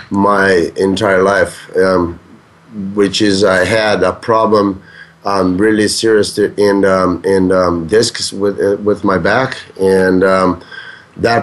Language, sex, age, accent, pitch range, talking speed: English, male, 30-49, American, 100-115 Hz, 145 wpm